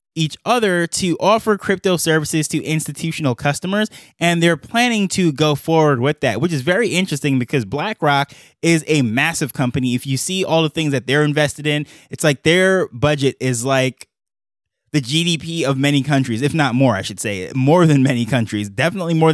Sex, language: male, English